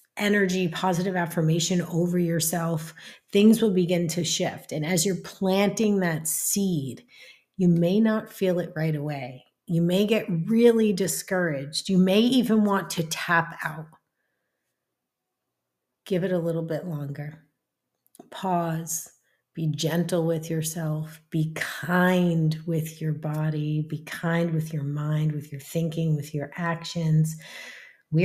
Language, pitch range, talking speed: English, 155-195 Hz, 135 wpm